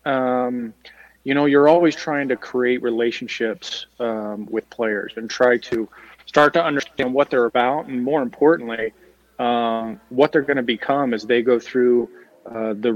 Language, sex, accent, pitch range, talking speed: English, male, American, 120-135 Hz, 165 wpm